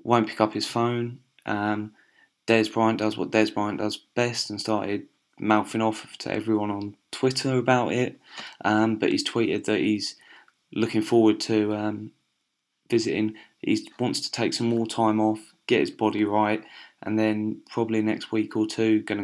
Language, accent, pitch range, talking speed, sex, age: English, British, 110-120 Hz, 170 wpm, male, 20-39